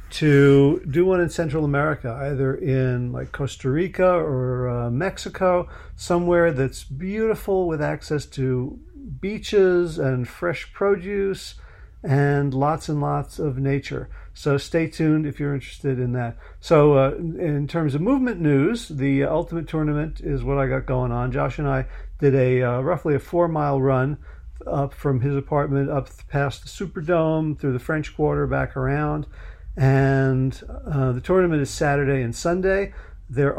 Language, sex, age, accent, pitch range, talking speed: English, male, 50-69, American, 135-165 Hz, 155 wpm